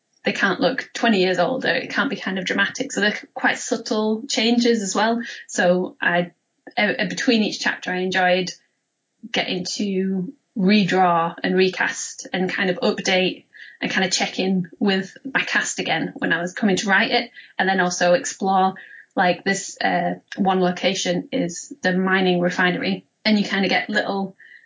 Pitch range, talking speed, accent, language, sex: 180-220 Hz, 175 wpm, British, English, female